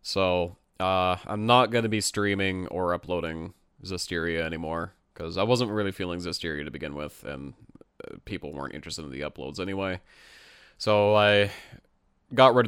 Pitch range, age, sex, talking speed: 85-110 Hz, 20-39, male, 155 wpm